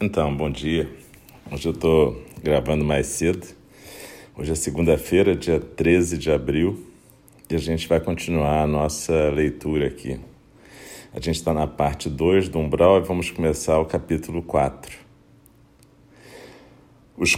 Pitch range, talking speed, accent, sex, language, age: 75-90 Hz, 140 wpm, Brazilian, male, Portuguese, 50-69